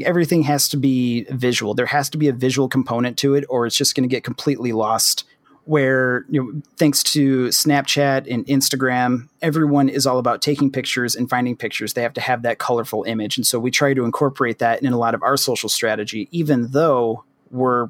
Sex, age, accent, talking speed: male, 30-49, American, 210 wpm